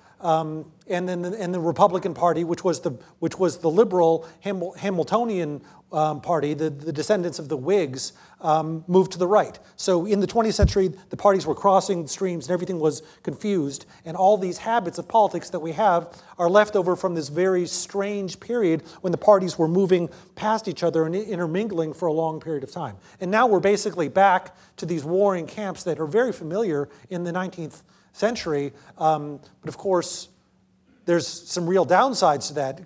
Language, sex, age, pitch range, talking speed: English, male, 30-49, 155-185 Hz, 195 wpm